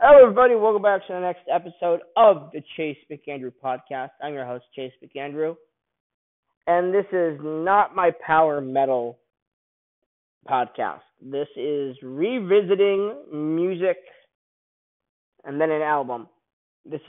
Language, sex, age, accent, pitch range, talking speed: English, male, 20-39, American, 135-170 Hz, 125 wpm